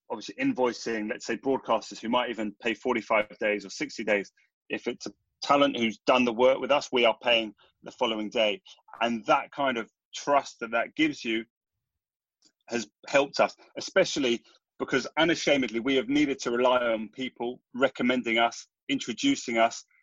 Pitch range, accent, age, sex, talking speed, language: 115-155 Hz, British, 30-49, male, 170 wpm, English